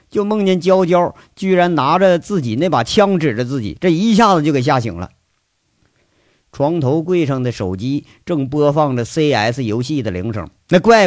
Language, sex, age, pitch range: Chinese, male, 50-69, 120-185 Hz